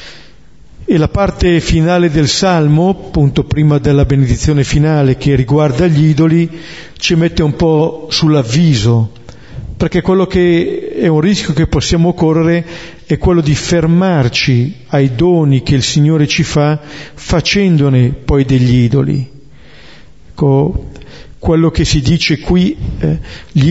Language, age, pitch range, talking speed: Italian, 50-69, 140-165 Hz, 130 wpm